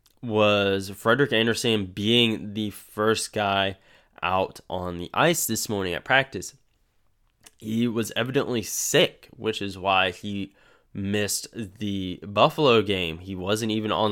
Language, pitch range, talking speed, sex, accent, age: English, 95-115 Hz, 130 wpm, male, American, 10-29